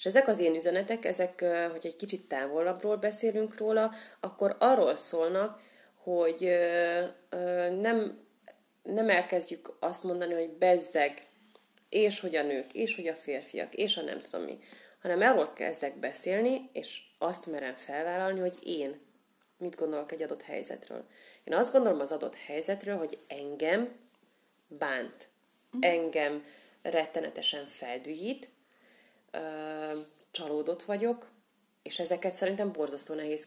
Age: 30-49